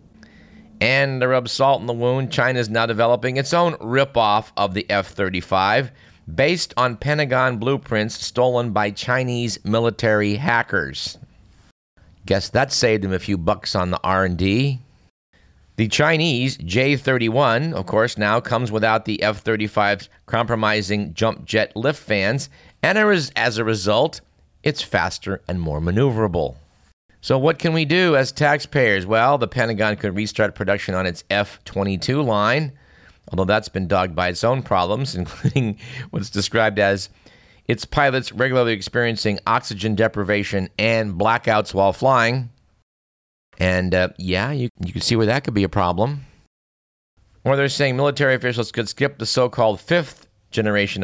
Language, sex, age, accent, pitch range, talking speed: English, male, 50-69, American, 95-130 Hz, 145 wpm